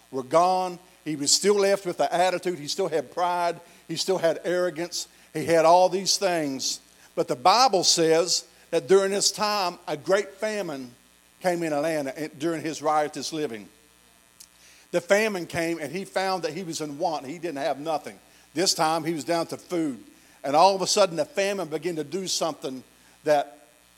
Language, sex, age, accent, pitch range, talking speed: English, male, 50-69, American, 155-190 Hz, 185 wpm